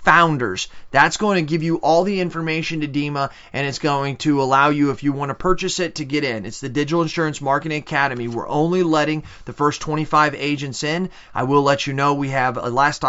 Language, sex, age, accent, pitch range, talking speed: English, male, 30-49, American, 130-155 Hz, 220 wpm